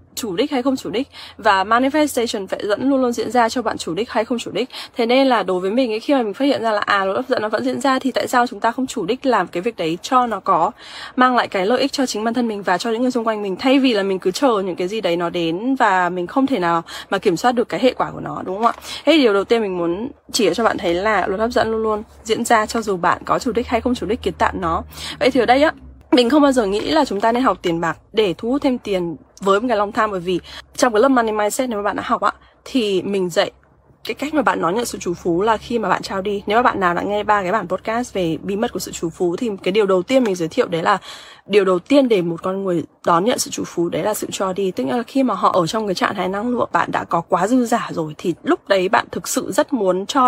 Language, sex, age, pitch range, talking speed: English, female, 10-29, 185-250 Hz, 315 wpm